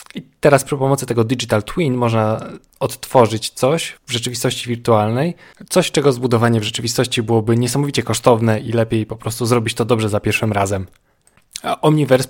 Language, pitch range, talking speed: Polish, 110-130 Hz, 160 wpm